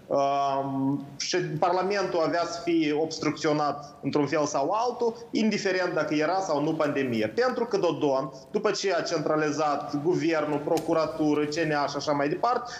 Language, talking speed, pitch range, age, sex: Romanian, 145 wpm, 145-195 Hz, 30-49, male